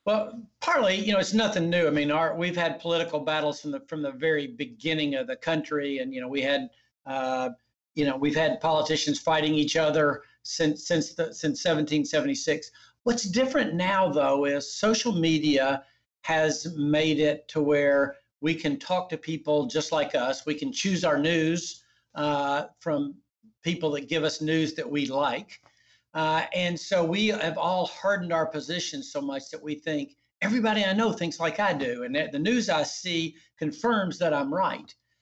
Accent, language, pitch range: American, English, 145-180 Hz